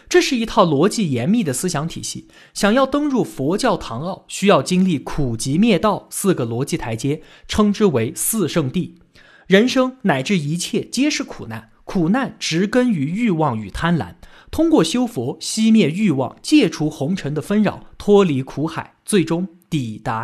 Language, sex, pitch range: Chinese, male, 140-215 Hz